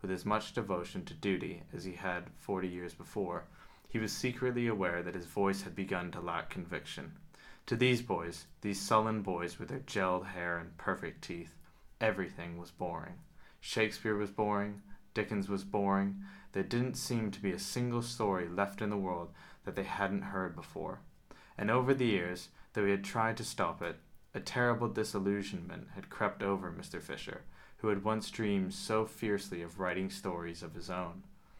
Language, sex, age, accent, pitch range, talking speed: English, male, 20-39, American, 95-115 Hz, 180 wpm